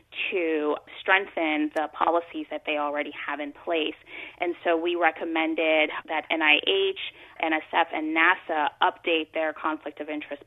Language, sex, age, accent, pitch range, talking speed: English, female, 30-49, American, 150-185 Hz, 140 wpm